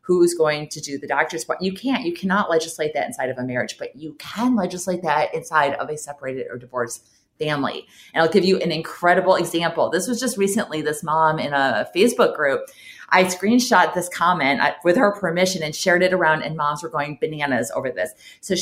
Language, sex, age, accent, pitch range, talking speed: English, female, 30-49, American, 150-205 Hz, 210 wpm